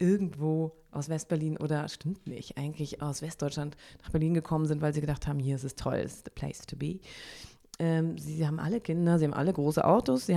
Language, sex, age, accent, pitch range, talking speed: German, female, 30-49, German, 155-195 Hz, 225 wpm